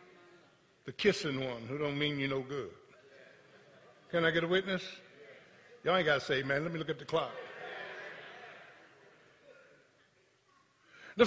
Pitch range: 165-260 Hz